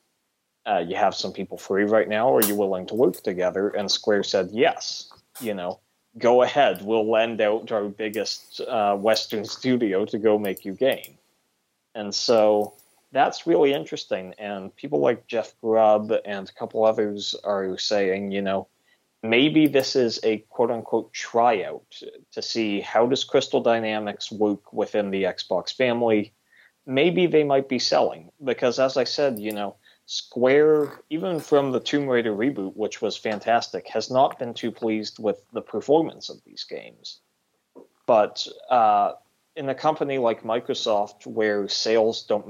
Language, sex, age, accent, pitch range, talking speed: English, male, 30-49, American, 100-120 Hz, 160 wpm